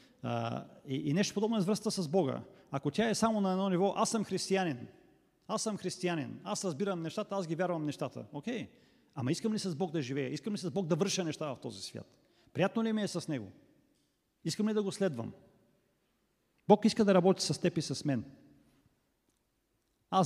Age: 40-59